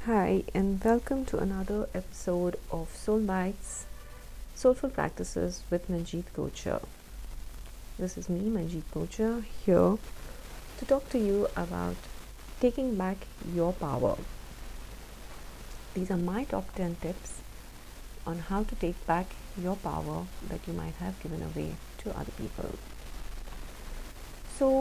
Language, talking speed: English, 125 wpm